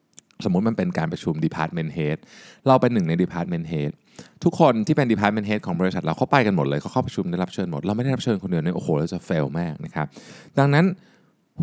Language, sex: Thai, male